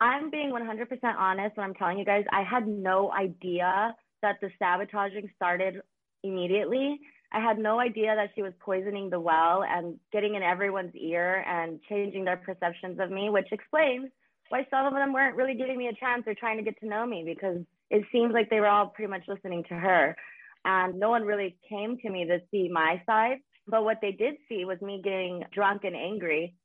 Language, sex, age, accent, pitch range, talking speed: English, female, 20-39, American, 185-230 Hz, 205 wpm